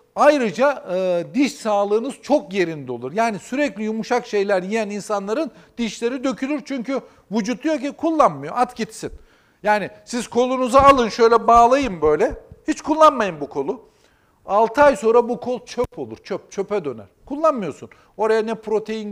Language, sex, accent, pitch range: Turkish, male, native, 175-245 Hz